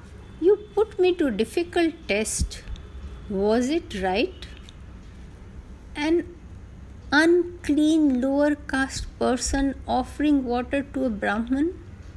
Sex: female